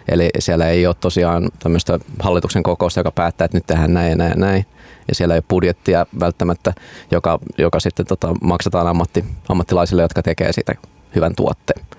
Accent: native